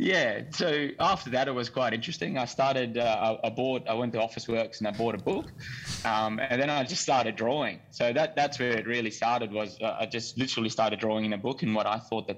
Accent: Australian